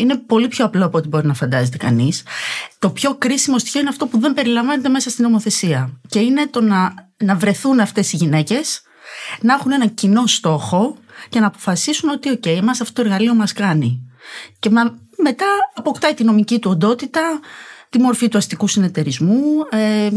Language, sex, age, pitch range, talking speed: Greek, female, 30-49, 180-260 Hz, 180 wpm